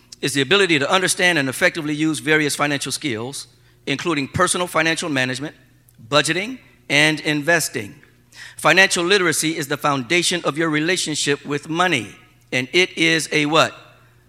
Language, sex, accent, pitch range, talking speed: English, male, American, 120-165 Hz, 140 wpm